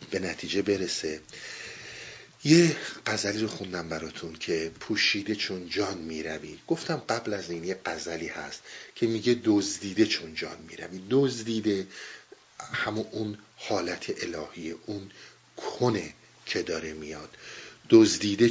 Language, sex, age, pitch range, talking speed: Persian, male, 50-69, 90-125 Hz, 125 wpm